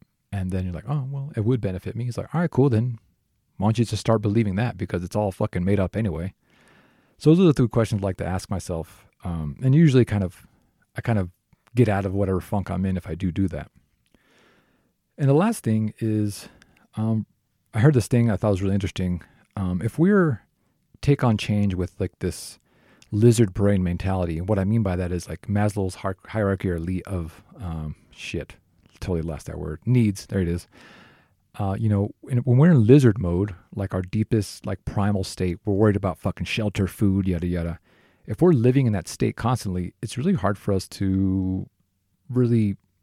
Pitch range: 90-115 Hz